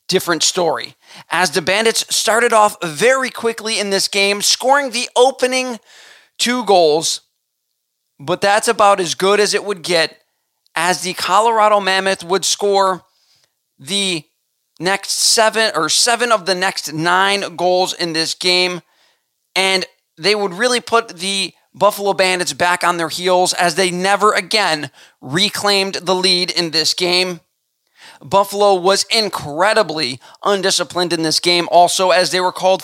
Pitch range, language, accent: 175-210 Hz, English, American